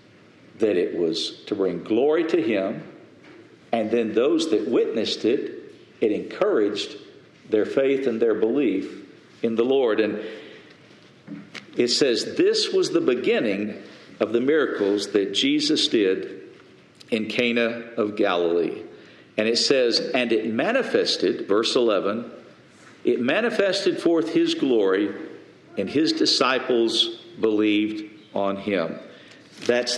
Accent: American